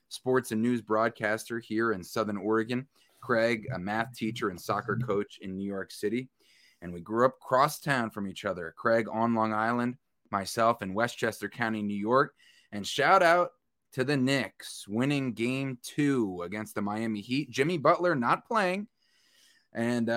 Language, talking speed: English, 165 wpm